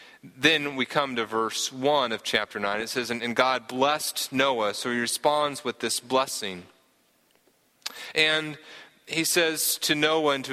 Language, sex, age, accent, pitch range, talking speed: English, male, 30-49, American, 120-150 Hz, 160 wpm